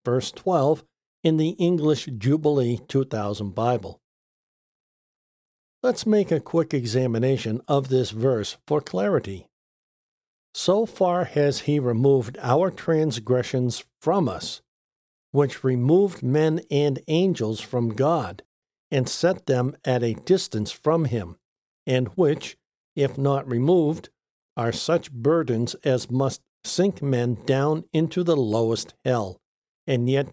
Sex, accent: male, American